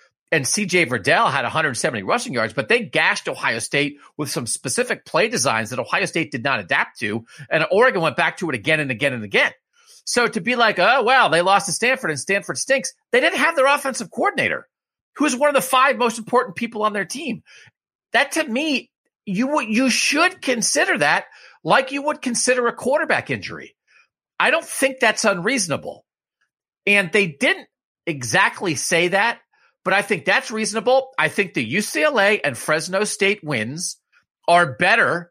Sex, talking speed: male, 185 wpm